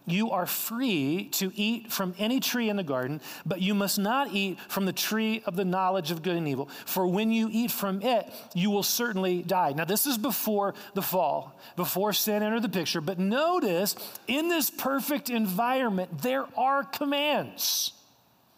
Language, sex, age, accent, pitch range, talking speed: English, male, 40-59, American, 175-225 Hz, 180 wpm